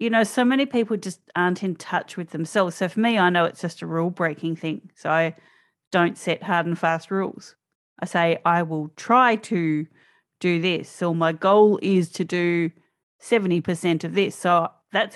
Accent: Australian